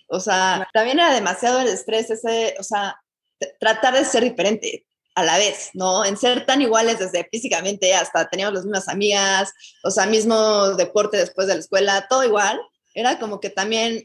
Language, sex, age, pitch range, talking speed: Spanish, female, 20-39, 190-230 Hz, 190 wpm